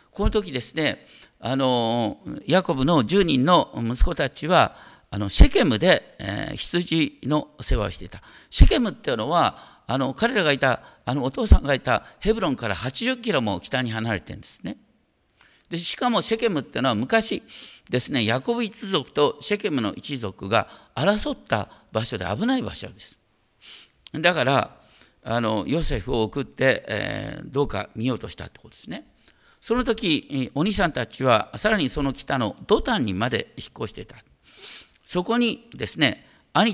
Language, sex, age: Japanese, male, 50-69